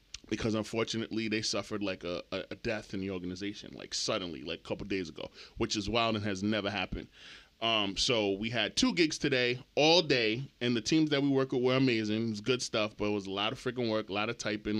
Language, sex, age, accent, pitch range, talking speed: English, male, 20-39, American, 105-120 Hz, 245 wpm